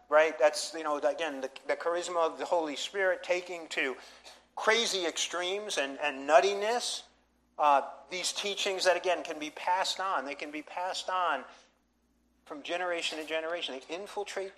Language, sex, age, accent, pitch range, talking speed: English, male, 50-69, American, 150-195 Hz, 160 wpm